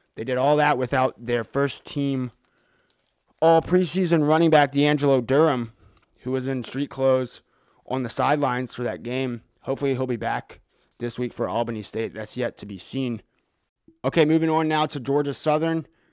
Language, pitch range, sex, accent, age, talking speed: English, 115-140 Hz, male, American, 20-39, 165 wpm